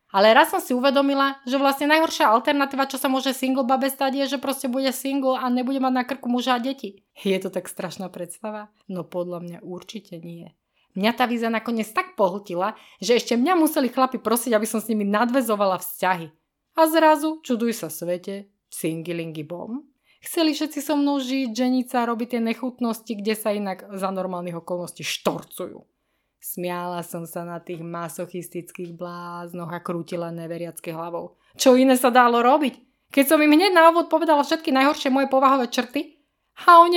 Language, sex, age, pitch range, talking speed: Slovak, female, 20-39, 180-275 Hz, 175 wpm